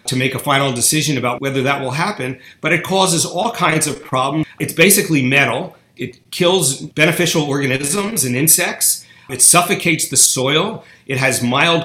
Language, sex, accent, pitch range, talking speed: English, male, American, 130-170 Hz, 165 wpm